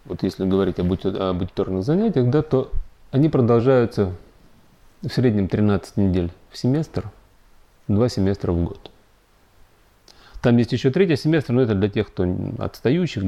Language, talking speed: Russian, 135 wpm